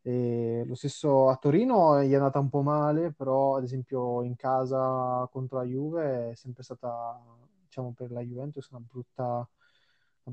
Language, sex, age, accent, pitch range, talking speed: Italian, male, 20-39, native, 125-150 Hz, 170 wpm